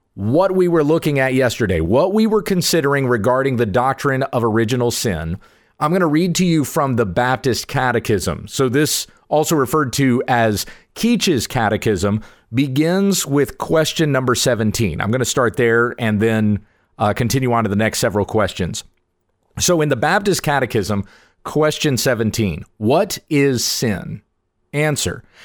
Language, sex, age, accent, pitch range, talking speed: English, male, 40-59, American, 110-150 Hz, 155 wpm